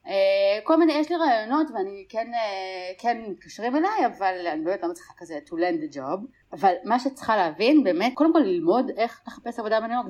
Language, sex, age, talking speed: Hebrew, female, 30-49, 195 wpm